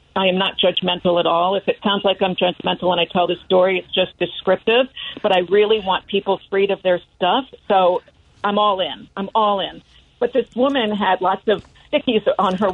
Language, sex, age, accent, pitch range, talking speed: English, female, 50-69, American, 185-240 Hz, 210 wpm